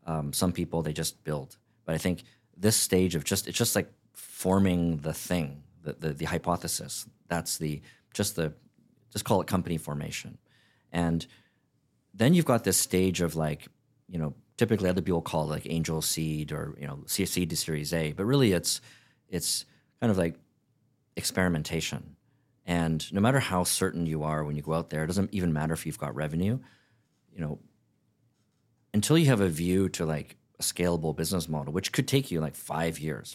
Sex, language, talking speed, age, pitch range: male, English, 190 wpm, 40-59, 80-100 Hz